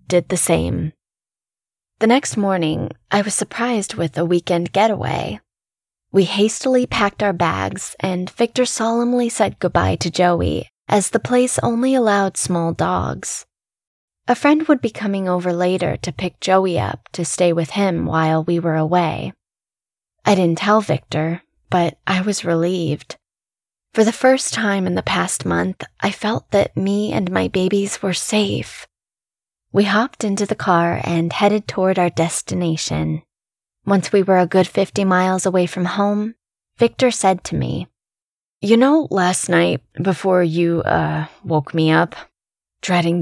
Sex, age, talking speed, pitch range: female, 10-29, 155 wpm, 165-205 Hz